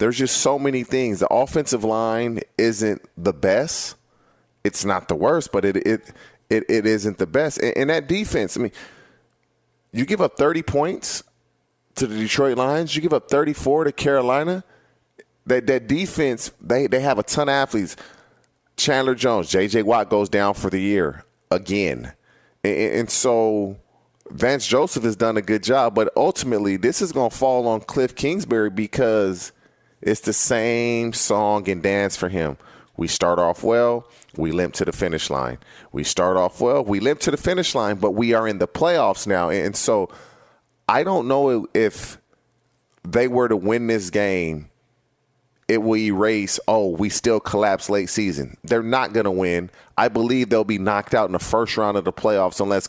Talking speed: 185 wpm